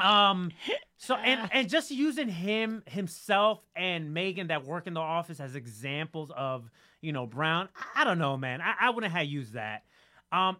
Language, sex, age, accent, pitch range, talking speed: English, male, 30-49, American, 170-235 Hz, 180 wpm